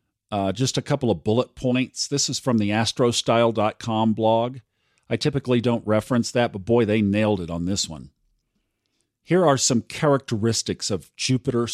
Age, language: 50-69, English